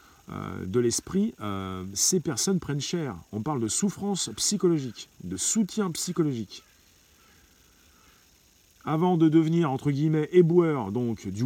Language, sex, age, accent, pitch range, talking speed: French, male, 40-59, French, 105-160 Hz, 110 wpm